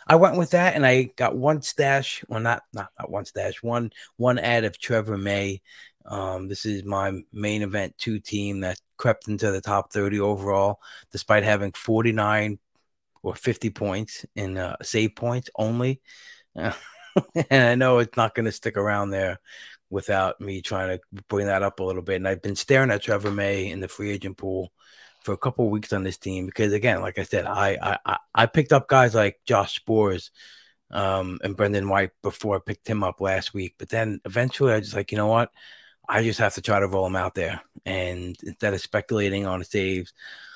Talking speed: 205 wpm